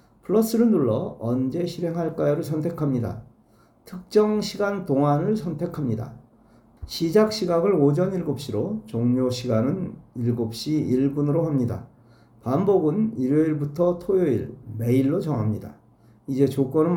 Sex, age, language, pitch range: male, 40-59, Korean, 120-175 Hz